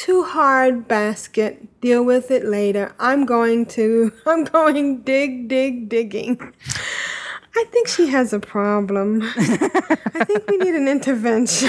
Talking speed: 140 wpm